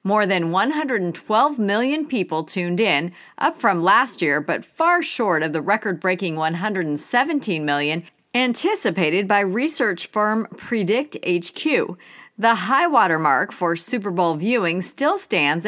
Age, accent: 40-59, American